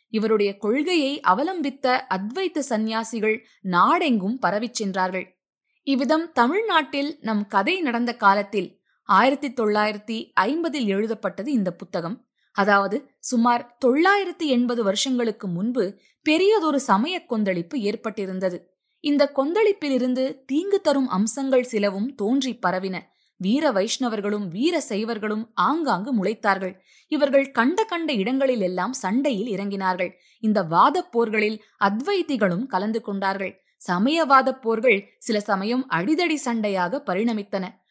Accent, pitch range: native, 200-275 Hz